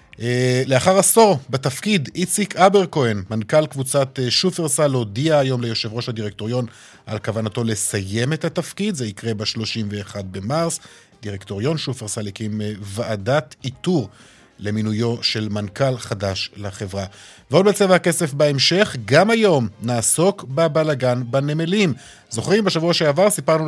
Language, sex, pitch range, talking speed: Hebrew, male, 120-160 Hz, 115 wpm